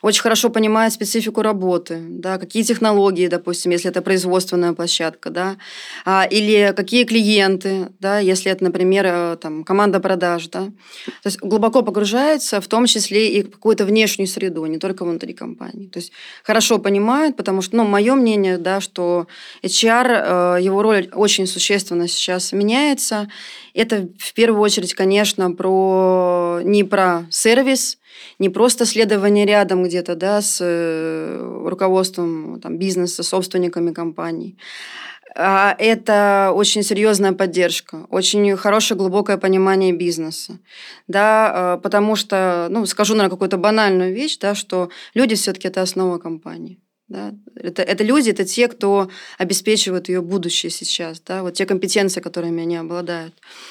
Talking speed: 140 wpm